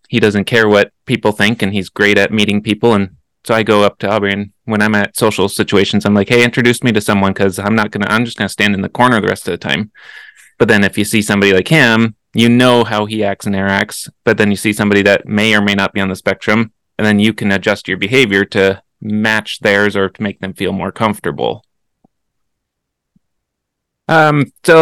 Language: English